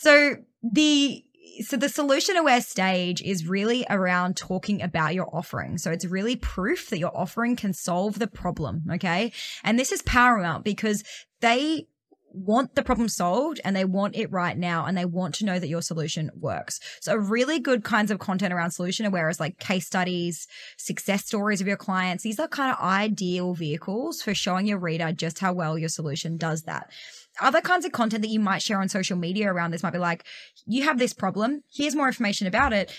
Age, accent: 20-39, Australian